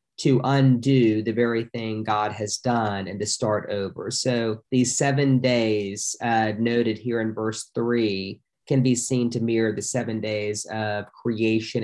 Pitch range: 110-130 Hz